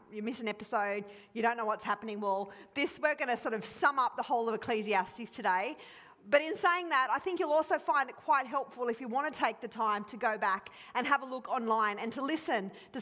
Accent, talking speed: Australian, 250 wpm